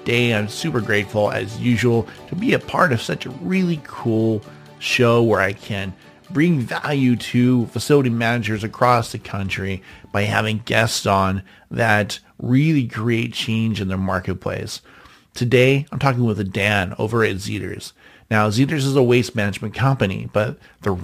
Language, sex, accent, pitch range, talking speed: English, male, American, 100-125 Hz, 155 wpm